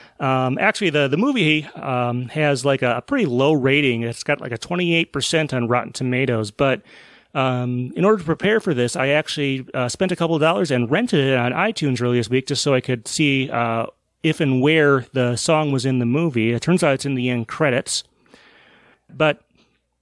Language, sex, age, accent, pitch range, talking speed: English, male, 30-49, American, 120-160 Hz, 205 wpm